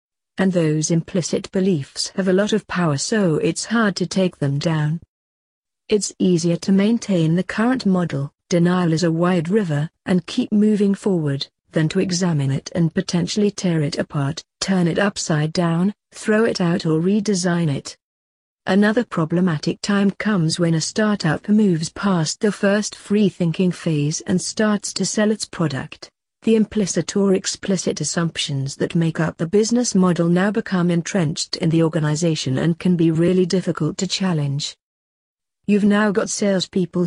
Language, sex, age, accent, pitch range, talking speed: English, female, 40-59, British, 160-200 Hz, 160 wpm